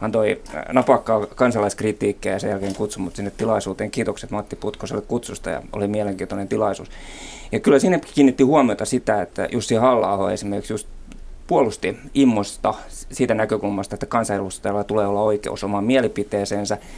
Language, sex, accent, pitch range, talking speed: Finnish, male, native, 100-115 Hz, 140 wpm